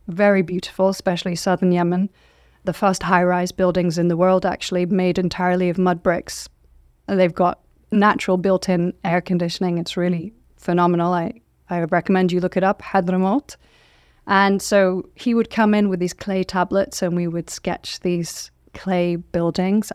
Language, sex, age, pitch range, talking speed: English, female, 30-49, 175-195 Hz, 155 wpm